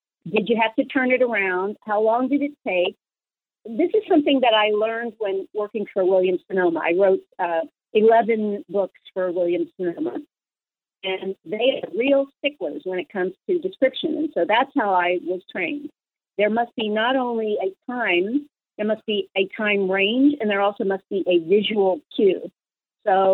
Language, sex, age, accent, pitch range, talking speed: English, female, 50-69, American, 195-265 Hz, 180 wpm